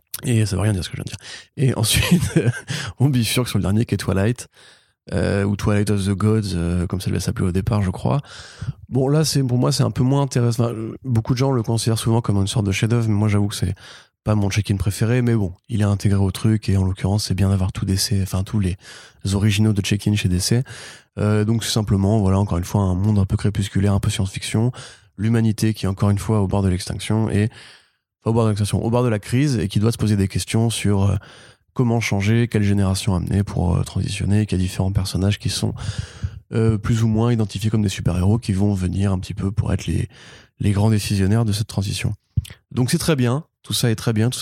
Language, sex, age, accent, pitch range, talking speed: French, male, 20-39, French, 100-115 Hz, 240 wpm